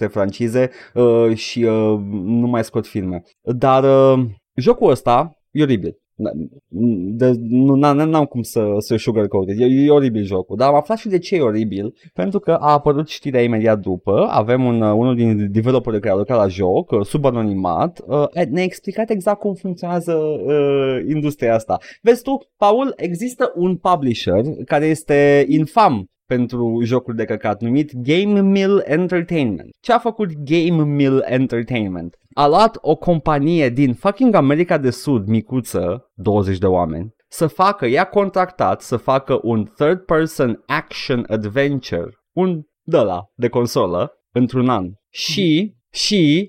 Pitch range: 115-165 Hz